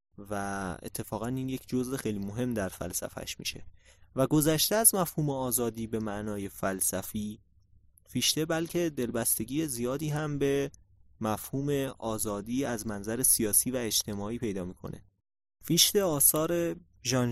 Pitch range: 100-120 Hz